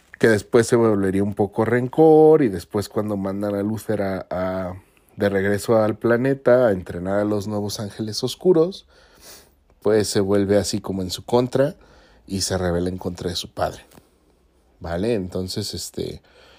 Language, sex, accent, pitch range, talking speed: Spanish, male, Mexican, 90-110 Hz, 155 wpm